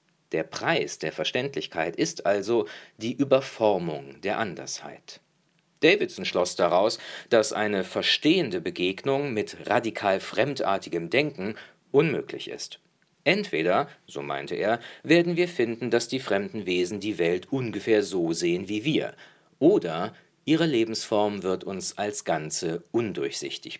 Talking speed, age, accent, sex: 120 wpm, 50-69, German, male